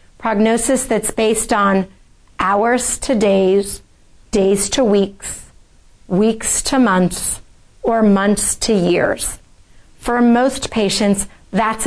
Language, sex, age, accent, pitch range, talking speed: English, female, 40-59, American, 210-255 Hz, 105 wpm